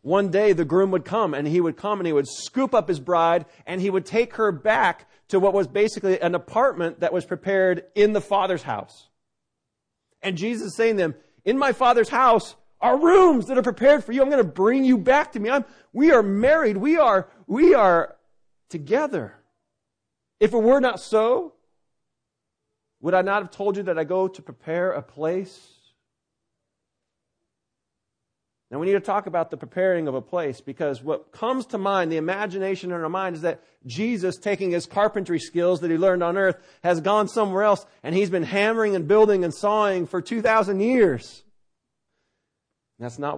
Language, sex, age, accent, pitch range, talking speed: English, male, 40-59, American, 165-215 Hz, 190 wpm